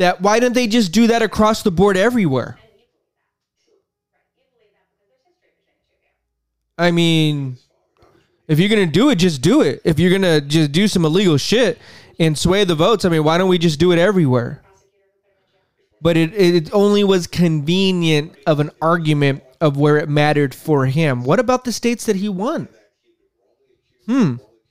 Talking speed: 165 wpm